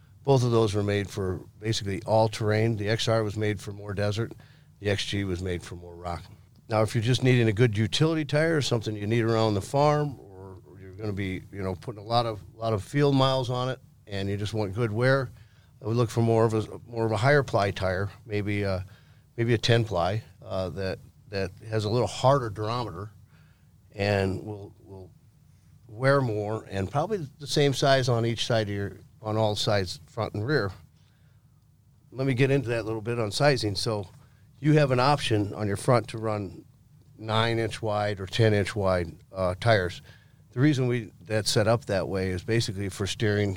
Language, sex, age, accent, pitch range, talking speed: English, male, 40-59, American, 100-125 Hz, 210 wpm